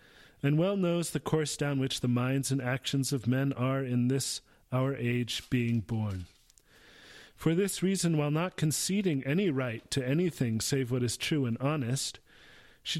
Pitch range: 120-145 Hz